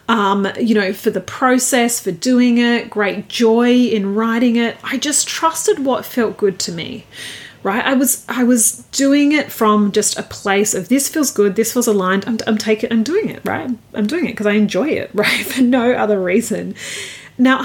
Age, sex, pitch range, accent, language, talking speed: 30-49, female, 205-255 Hz, Australian, English, 205 wpm